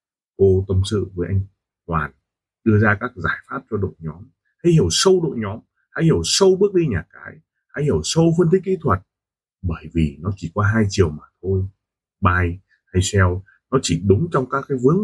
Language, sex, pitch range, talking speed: Vietnamese, male, 90-130 Hz, 210 wpm